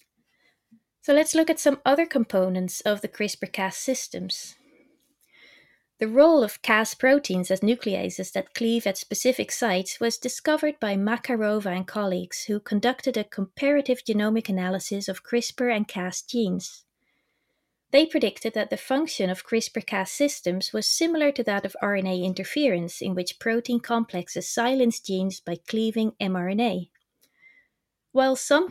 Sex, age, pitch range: female, 20-39, 190-250 Hz